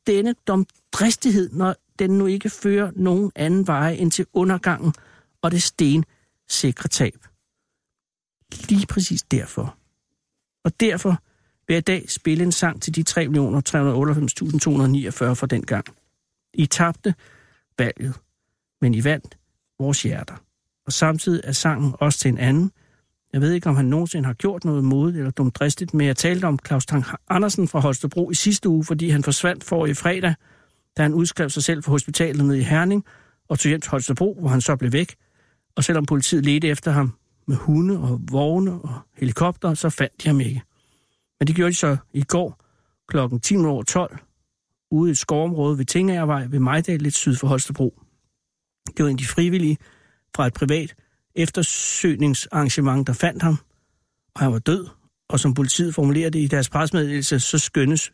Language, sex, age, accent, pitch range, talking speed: Danish, male, 60-79, native, 135-170 Hz, 165 wpm